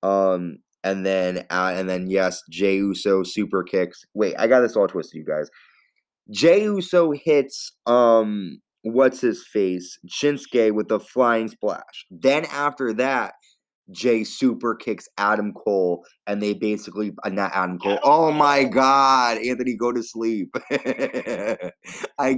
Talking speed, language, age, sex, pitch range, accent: 145 wpm, English, 20-39, male, 95-130 Hz, American